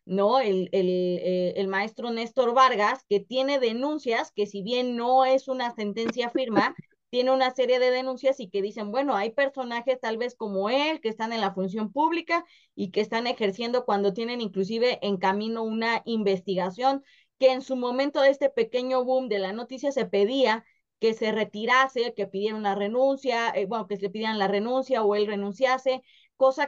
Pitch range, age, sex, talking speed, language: 205-265 Hz, 20-39, female, 185 wpm, Spanish